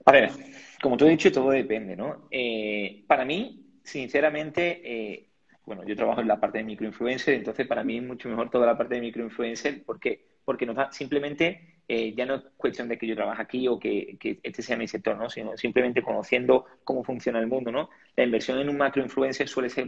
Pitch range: 115-140 Hz